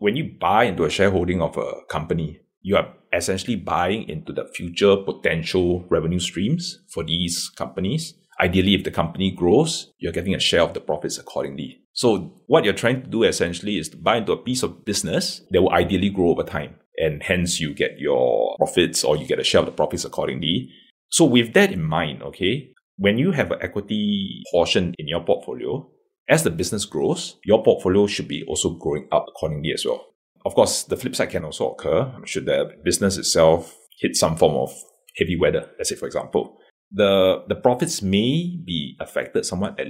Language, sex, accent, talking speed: English, male, Malaysian, 195 wpm